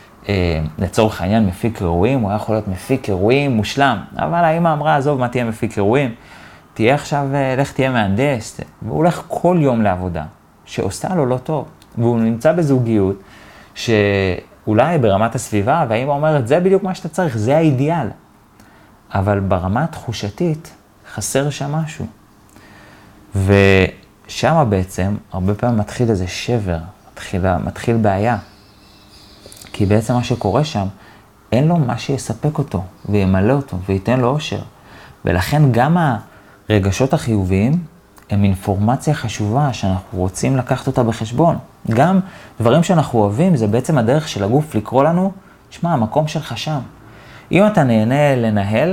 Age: 30-49